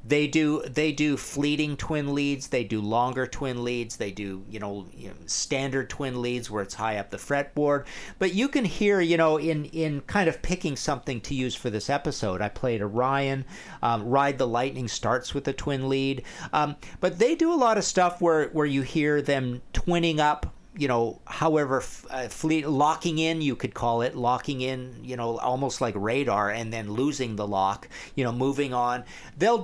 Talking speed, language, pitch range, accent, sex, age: 200 wpm, English, 120-165 Hz, American, male, 50-69